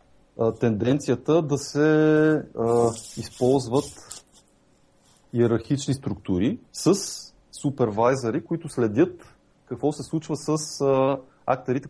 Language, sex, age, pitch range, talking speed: Bulgarian, male, 30-49, 115-145 Hz, 80 wpm